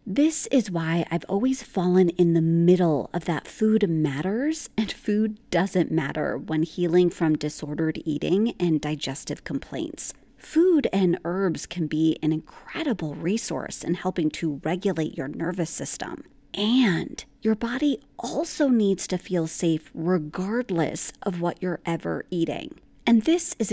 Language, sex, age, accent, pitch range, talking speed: English, female, 30-49, American, 170-225 Hz, 145 wpm